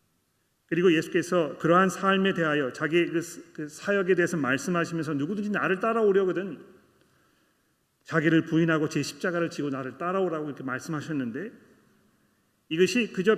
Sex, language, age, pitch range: male, Korean, 40-59, 140-180 Hz